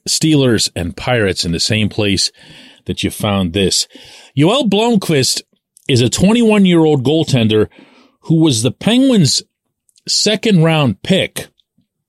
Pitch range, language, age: 105-155 Hz, English, 40-59